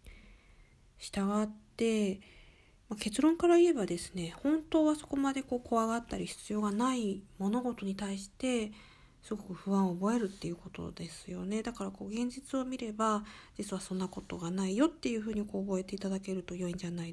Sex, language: female, Japanese